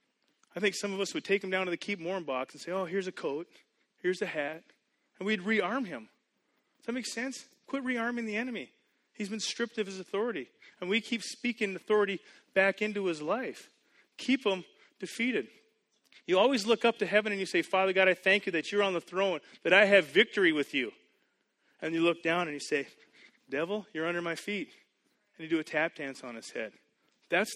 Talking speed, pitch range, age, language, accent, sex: 220 wpm, 155-210 Hz, 30-49, English, American, male